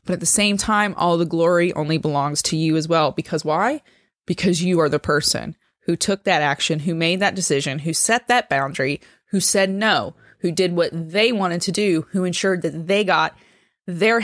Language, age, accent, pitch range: English, 20-39, American, 155-190 Hz